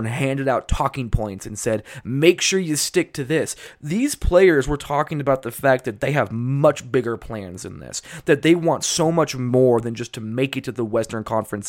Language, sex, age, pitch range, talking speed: English, male, 20-39, 125-170 Hz, 215 wpm